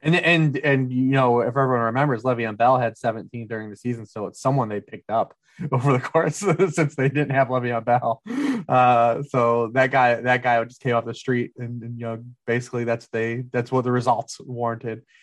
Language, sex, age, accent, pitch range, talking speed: English, male, 20-39, American, 110-130 Hz, 215 wpm